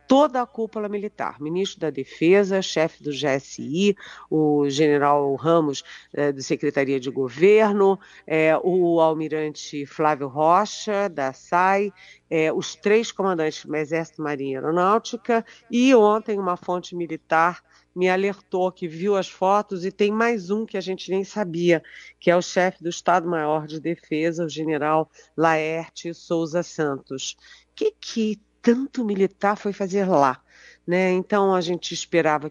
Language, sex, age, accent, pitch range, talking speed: Portuguese, female, 50-69, Brazilian, 150-195 Hz, 145 wpm